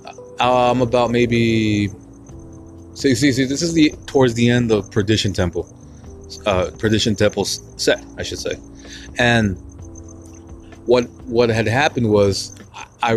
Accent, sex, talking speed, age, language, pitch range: American, male, 130 wpm, 20-39, English, 95-125 Hz